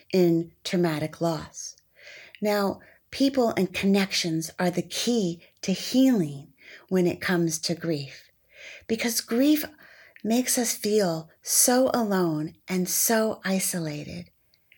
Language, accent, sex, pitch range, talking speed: English, American, female, 170-225 Hz, 110 wpm